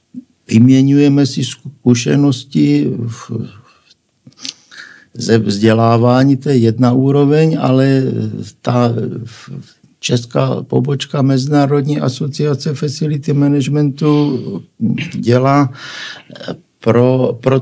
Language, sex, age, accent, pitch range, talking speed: Czech, male, 60-79, native, 120-145 Hz, 70 wpm